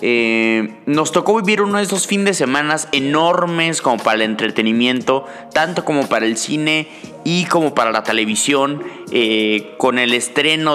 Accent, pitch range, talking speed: Mexican, 120-150 Hz, 160 wpm